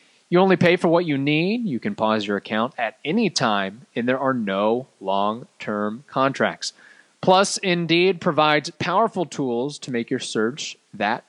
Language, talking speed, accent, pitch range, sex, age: English, 165 wpm, American, 120-165 Hz, male, 30-49